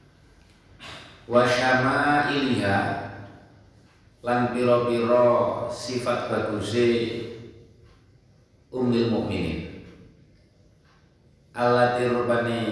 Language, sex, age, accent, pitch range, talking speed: Indonesian, male, 40-59, native, 105-125 Hz, 45 wpm